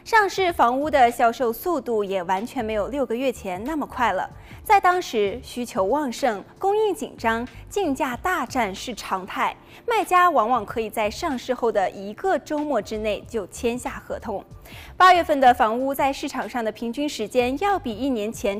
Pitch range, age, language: 225-345 Hz, 20-39, Chinese